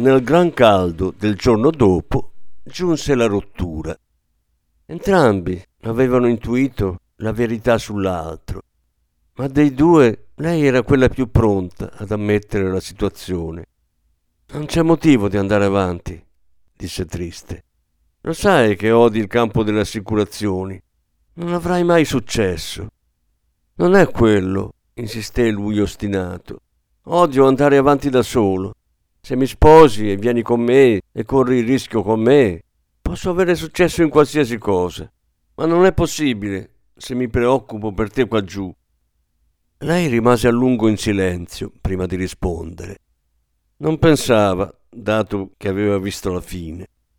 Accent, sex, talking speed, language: native, male, 135 wpm, Italian